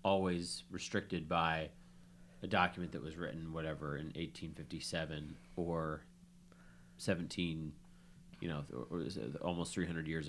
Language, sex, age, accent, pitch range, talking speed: English, male, 30-49, American, 80-90 Hz, 105 wpm